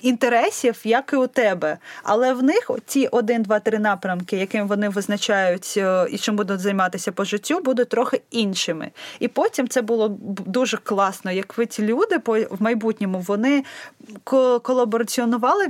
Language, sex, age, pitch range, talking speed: Ukrainian, female, 20-39, 205-250 Hz, 145 wpm